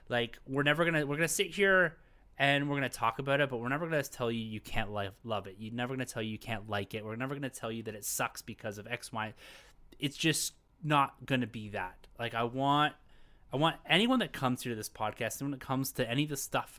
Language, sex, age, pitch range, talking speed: English, male, 20-39, 105-135 Hz, 255 wpm